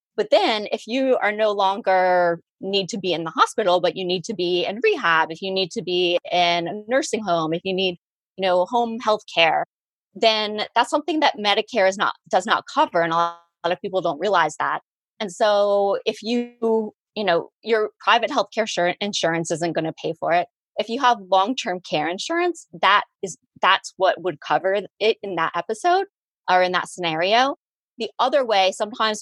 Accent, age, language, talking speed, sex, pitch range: American, 20-39, English, 195 wpm, female, 180-225 Hz